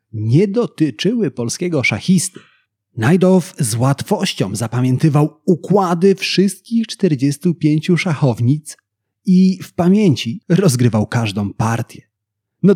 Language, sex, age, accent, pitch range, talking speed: Polish, male, 30-49, native, 115-180 Hz, 90 wpm